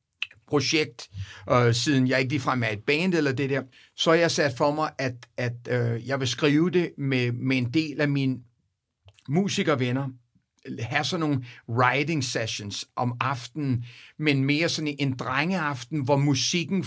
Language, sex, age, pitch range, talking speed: Danish, male, 60-79, 125-155 Hz, 170 wpm